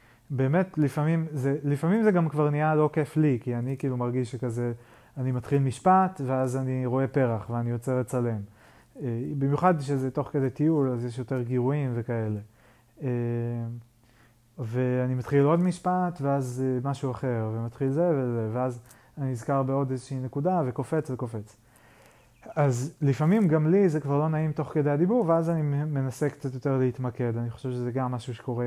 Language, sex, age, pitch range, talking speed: Hebrew, male, 30-49, 125-160 Hz, 160 wpm